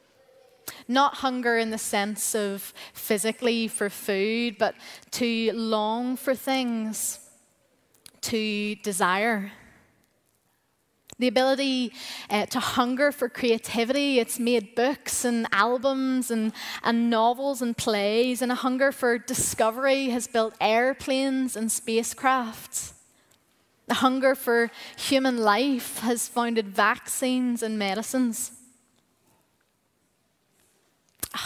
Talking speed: 105 wpm